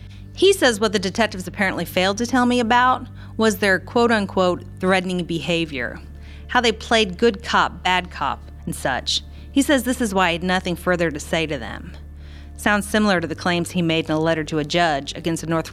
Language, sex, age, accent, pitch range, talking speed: English, female, 40-59, American, 140-200 Hz, 210 wpm